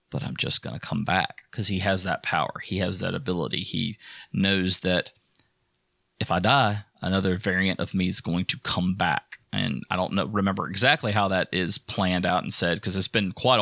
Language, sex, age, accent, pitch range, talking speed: English, male, 30-49, American, 95-110 Hz, 210 wpm